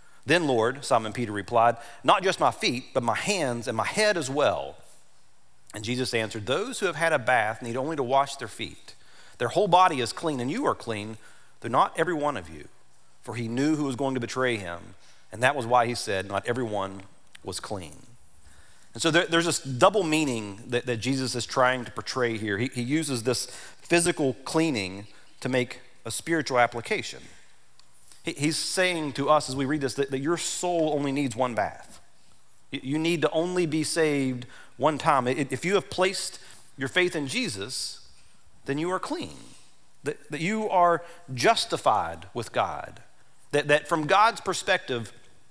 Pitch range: 115-165 Hz